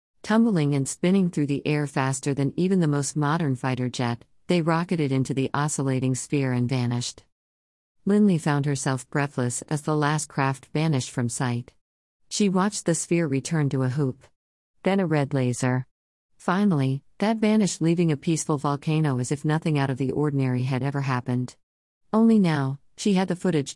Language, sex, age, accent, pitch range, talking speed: English, female, 50-69, American, 130-165 Hz, 170 wpm